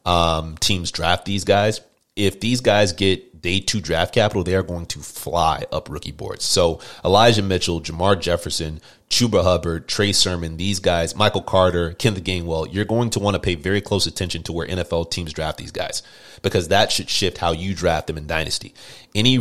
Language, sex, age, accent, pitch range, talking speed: English, male, 30-49, American, 85-100 Hz, 195 wpm